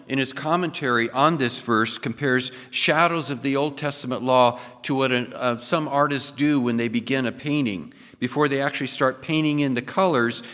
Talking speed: 175 wpm